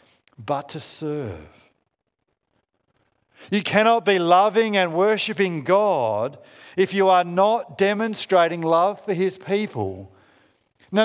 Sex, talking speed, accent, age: male, 110 wpm, Australian, 50-69